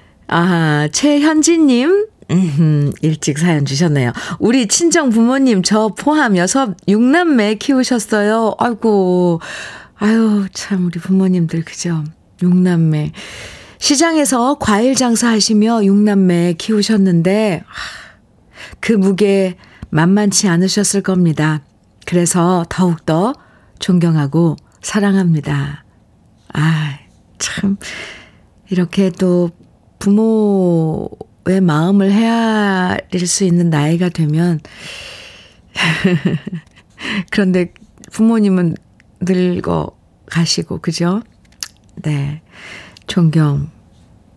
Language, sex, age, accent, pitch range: Korean, female, 50-69, native, 160-205 Hz